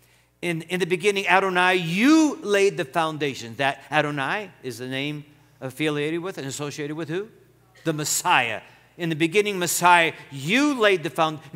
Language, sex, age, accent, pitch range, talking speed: English, male, 50-69, American, 130-200 Hz, 155 wpm